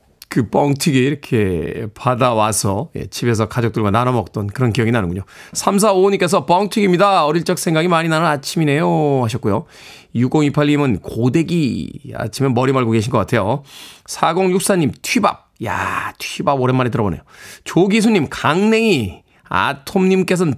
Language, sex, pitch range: Korean, male, 125-175 Hz